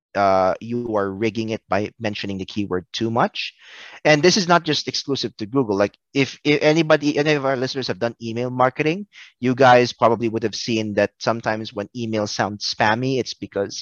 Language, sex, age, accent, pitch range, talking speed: English, male, 30-49, Filipino, 100-130 Hz, 195 wpm